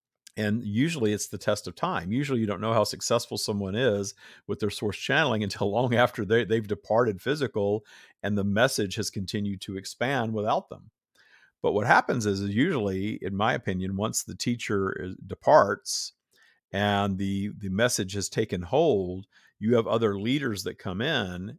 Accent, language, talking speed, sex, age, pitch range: American, English, 175 wpm, male, 50-69, 100-120 Hz